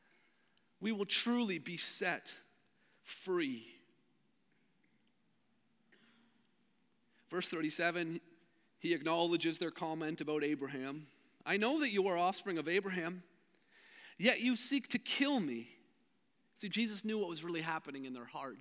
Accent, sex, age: American, male, 40-59